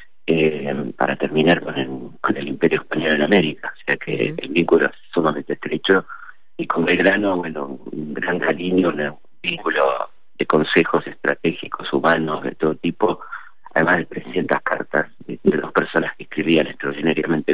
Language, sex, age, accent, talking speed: Spanish, male, 50-69, Argentinian, 155 wpm